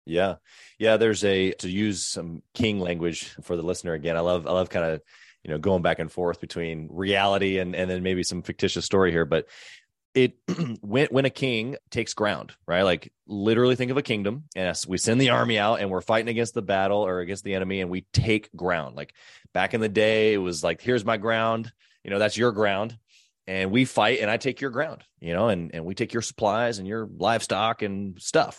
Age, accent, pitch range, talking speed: 20-39, American, 95-125 Hz, 225 wpm